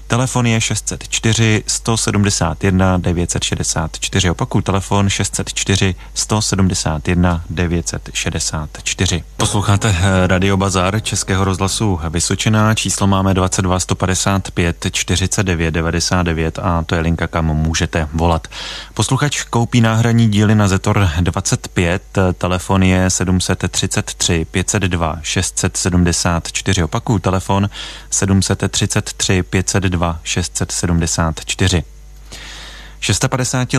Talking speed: 80 wpm